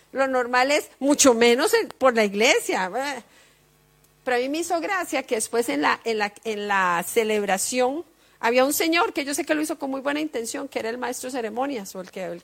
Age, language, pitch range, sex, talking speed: 40-59, Spanish, 250-330 Hz, female, 220 wpm